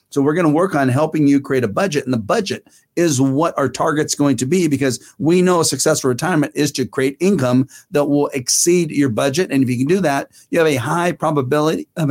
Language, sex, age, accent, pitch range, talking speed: English, male, 40-59, American, 130-155 Hz, 240 wpm